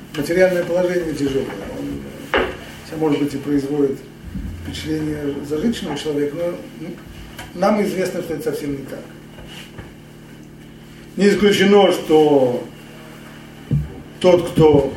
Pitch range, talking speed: 120-160 Hz, 95 wpm